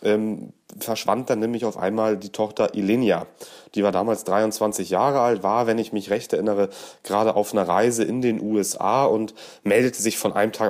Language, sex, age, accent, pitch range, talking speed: German, male, 30-49, German, 95-115 Hz, 190 wpm